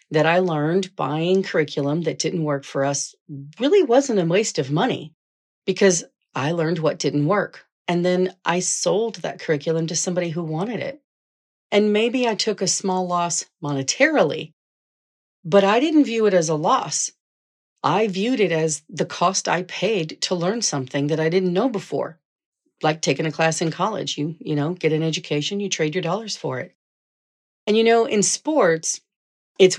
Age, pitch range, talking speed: 40-59, 155-195 Hz, 180 wpm